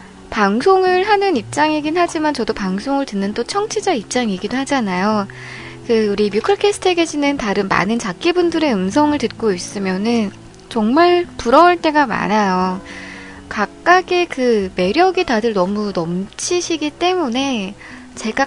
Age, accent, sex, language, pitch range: 20-39, native, female, Korean, 205-335 Hz